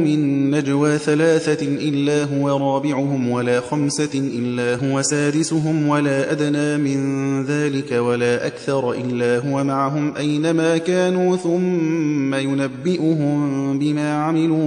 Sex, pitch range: male, 135-165 Hz